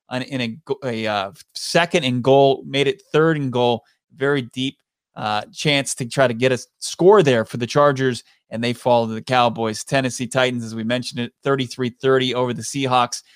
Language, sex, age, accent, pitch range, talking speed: English, male, 30-49, American, 120-145 Hz, 195 wpm